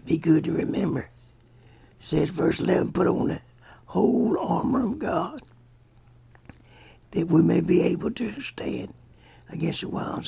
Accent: American